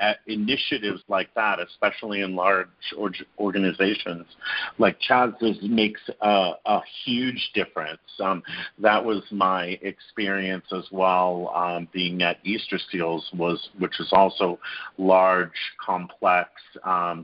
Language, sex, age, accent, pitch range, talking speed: English, male, 50-69, American, 95-115 Hz, 120 wpm